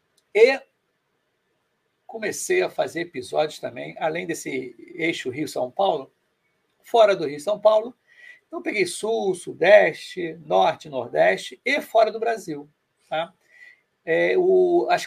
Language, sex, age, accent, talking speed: Portuguese, male, 60-79, Brazilian, 105 wpm